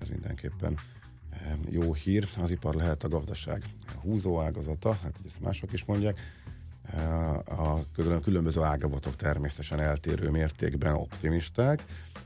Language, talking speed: Hungarian, 115 wpm